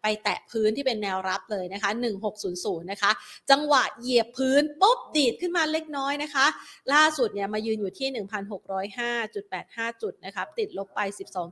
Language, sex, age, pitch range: Thai, female, 30-49, 195-245 Hz